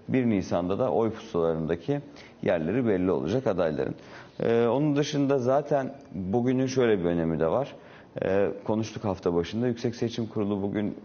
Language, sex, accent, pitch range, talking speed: Turkish, male, native, 85-115 Hz, 145 wpm